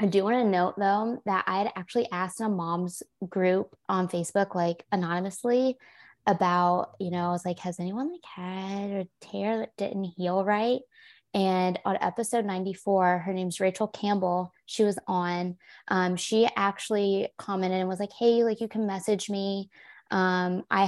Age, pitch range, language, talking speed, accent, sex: 20-39, 180-205 Hz, English, 170 wpm, American, female